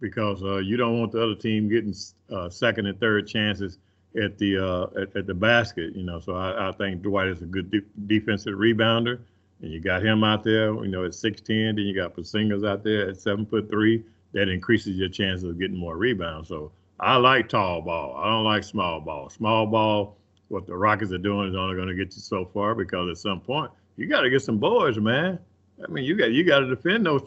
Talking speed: 240 wpm